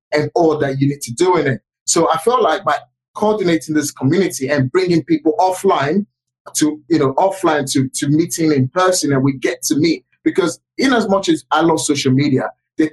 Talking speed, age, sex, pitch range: 210 wpm, 30-49, male, 135-175 Hz